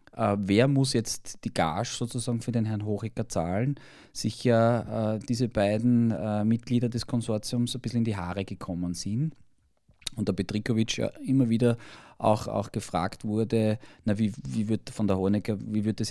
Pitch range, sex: 105-125 Hz, male